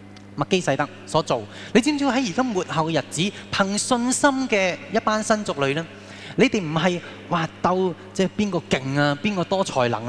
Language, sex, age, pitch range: Chinese, male, 20-39, 105-170 Hz